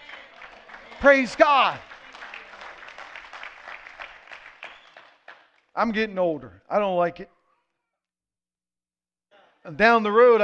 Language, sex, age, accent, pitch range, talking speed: English, male, 40-59, American, 170-220 Hz, 75 wpm